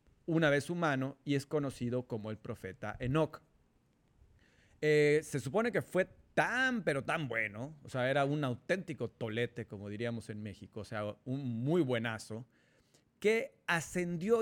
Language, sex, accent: Spanish, male, Mexican